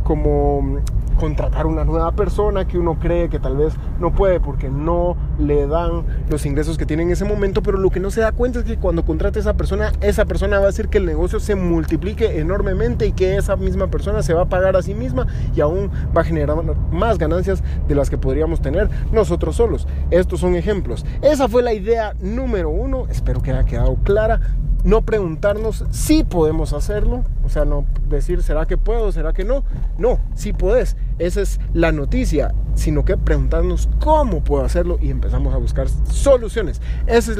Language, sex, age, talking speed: Spanish, male, 30-49, 200 wpm